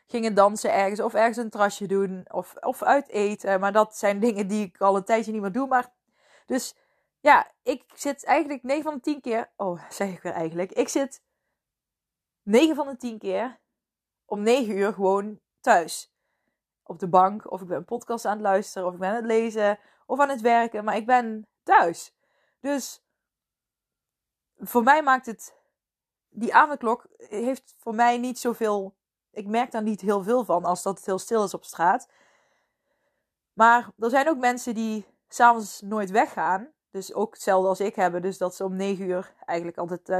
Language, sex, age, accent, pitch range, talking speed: Dutch, female, 20-39, Dutch, 190-240 Hz, 190 wpm